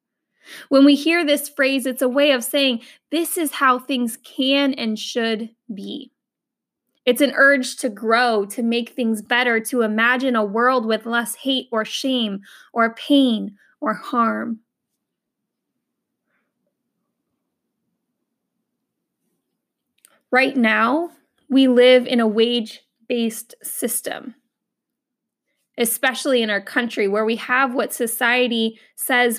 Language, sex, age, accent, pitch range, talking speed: English, female, 10-29, American, 225-260 Hz, 120 wpm